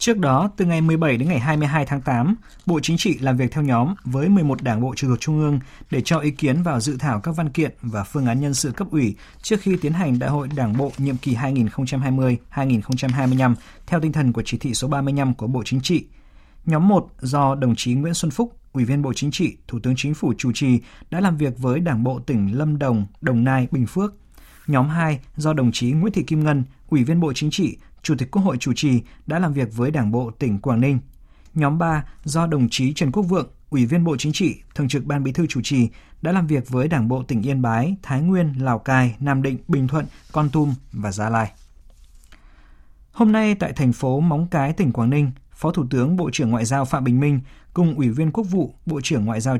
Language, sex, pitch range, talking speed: Vietnamese, male, 125-160 Hz, 240 wpm